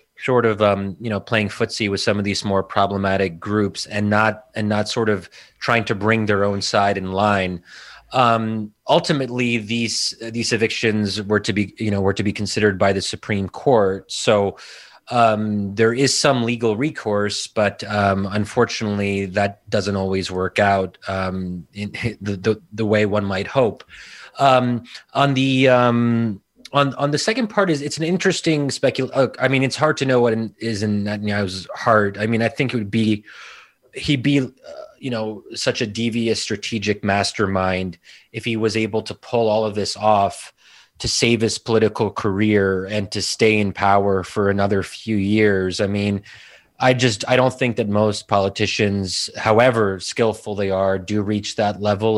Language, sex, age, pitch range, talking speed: English, male, 30-49, 100-115 Hz, 180 wpm